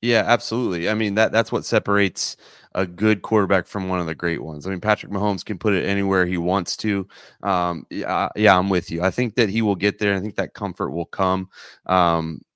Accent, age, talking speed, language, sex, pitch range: American, 30-49, 230 wpm, English, male, 95-110 Hz